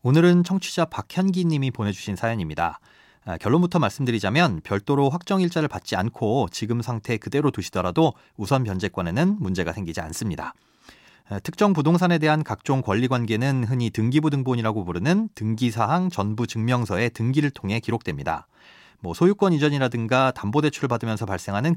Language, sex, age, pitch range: Korean, male, 30-49, 105-155 Hz